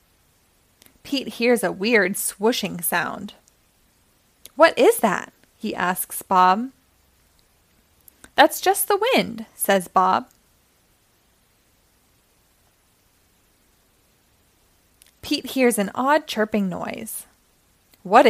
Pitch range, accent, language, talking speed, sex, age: 190-255 Hz, American, English, 80 wpm, female, 20-39